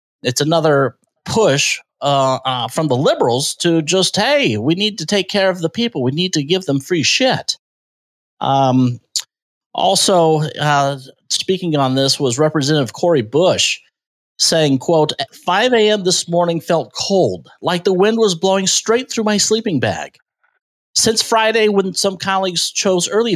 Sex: male